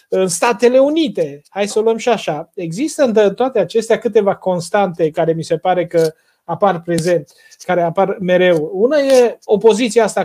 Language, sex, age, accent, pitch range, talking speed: Romanian, male, 30-49, native, 170-220 Hz, 170 wpm